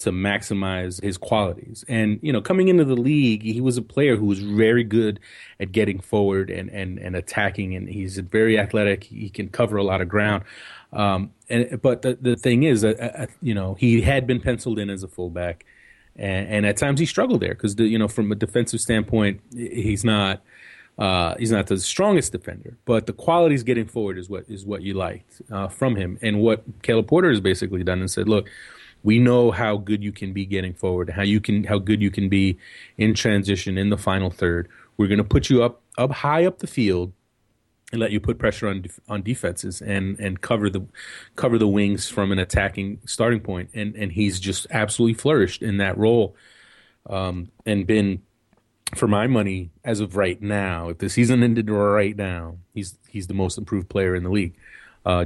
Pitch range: 95-115 Hz